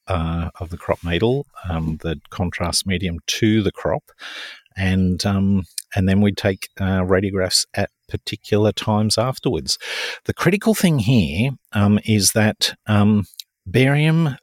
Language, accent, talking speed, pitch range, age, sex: English, Australian, 135 wpm, 85-105 Hz, 50-69, male